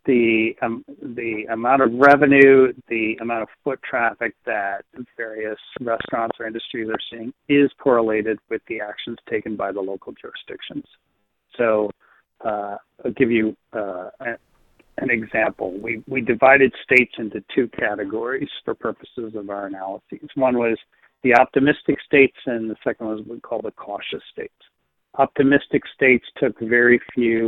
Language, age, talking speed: English, 40-59, 150 wpm